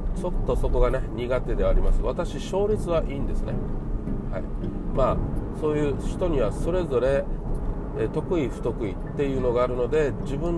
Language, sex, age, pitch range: Japanese, male, 40-59, 110-155 Hz